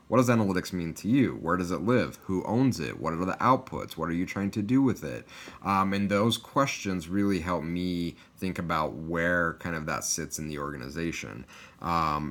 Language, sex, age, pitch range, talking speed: English, male, 30-49, 80-110 Hz, 210 wpm